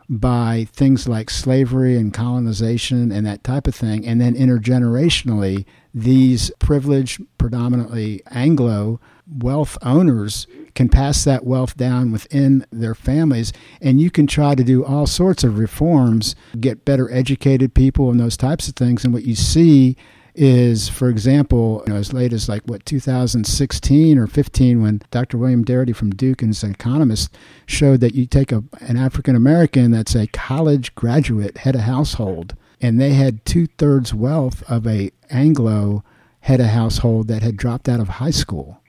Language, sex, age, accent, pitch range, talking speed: English, male, 50-69, American, 115-135 Hz, 160 wpm